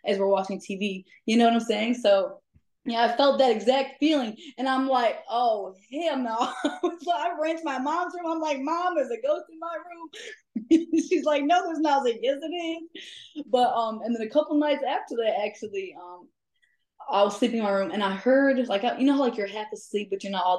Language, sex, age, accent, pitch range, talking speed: English, female, 20-39, American, 195-285 Hz, 230 wpm